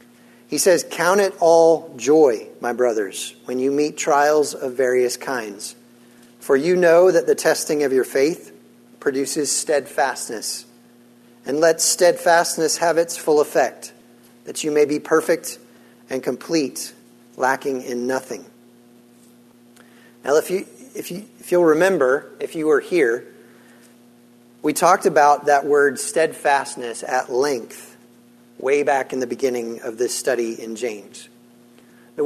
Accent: American